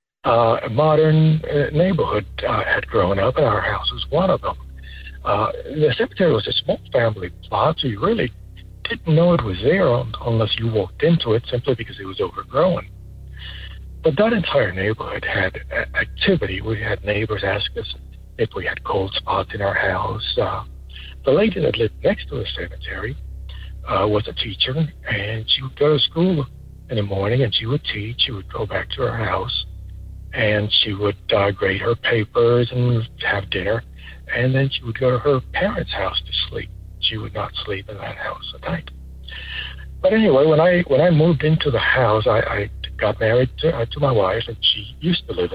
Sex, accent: male, American